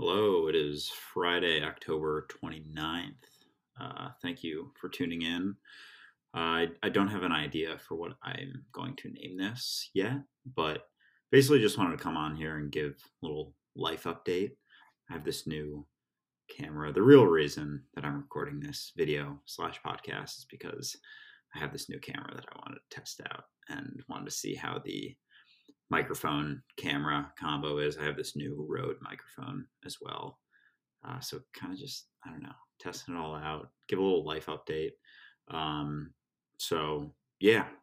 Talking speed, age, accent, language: 170 wpm, 30-49, American, English